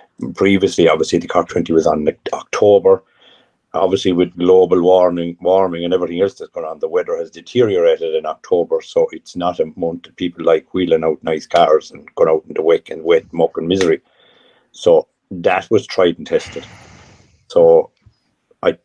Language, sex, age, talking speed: English, male, 50-69, 180 wpm